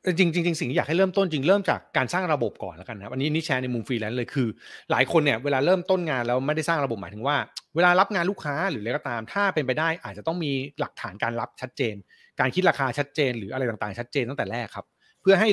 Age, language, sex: 30-49, Thai, male